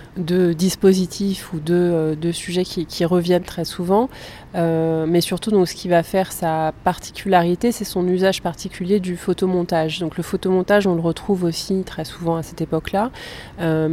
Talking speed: 170 wpm